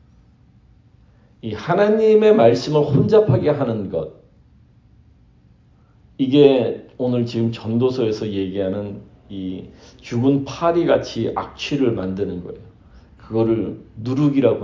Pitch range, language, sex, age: 95-135 Hz, Korean, male, 40-59